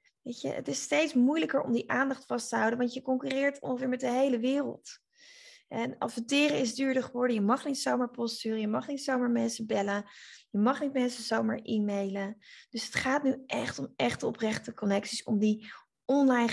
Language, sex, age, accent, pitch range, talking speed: Dutch, female, 20-39, Dutch, 205-255 Hz, 195 wpm